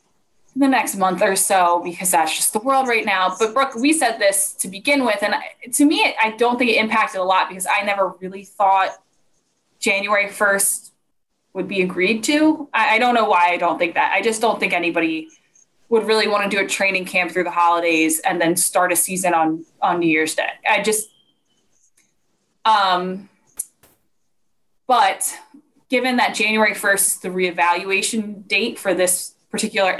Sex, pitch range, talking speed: female, 185-220 Hz, 180 wpm